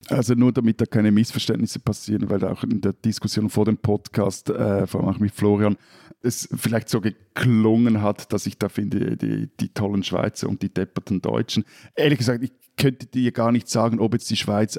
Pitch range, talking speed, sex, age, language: 100-120 Hz, 205 wpm, male, 50-69, German